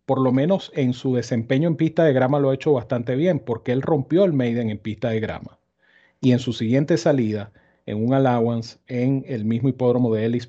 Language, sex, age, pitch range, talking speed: Spanish, male, 40-59, 115-135 Hz, 220 wpm